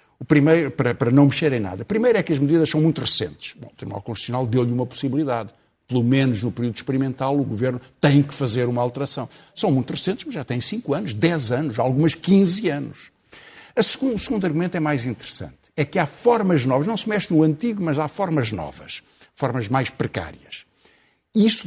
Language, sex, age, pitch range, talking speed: Portuguese, male, 60-79, 125-165 Hz, 195 wpm